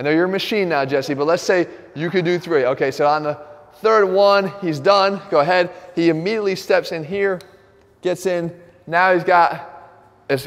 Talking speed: 200 wpm